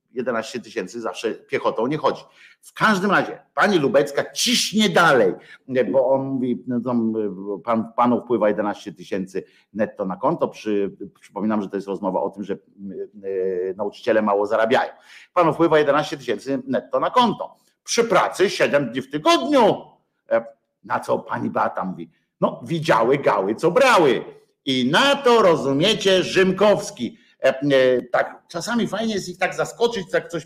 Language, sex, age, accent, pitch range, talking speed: Polish, male, 50-69, native, 125-195 Hz, 140 wpm